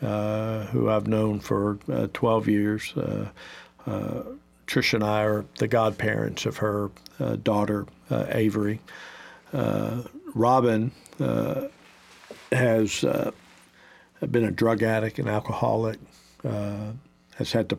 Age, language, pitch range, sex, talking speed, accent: 50-69, English, 105-115 Hz, male, 125 wpm, American